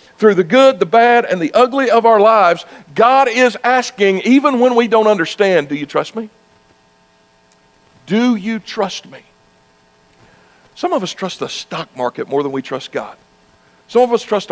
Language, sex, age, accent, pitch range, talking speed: English, male, 60-79, American, 125-195 Hz, 180 wpm